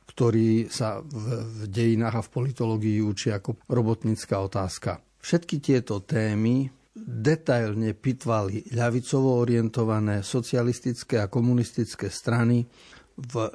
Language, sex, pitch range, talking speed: Slovak, male, 110-130 Hz, 100 wpm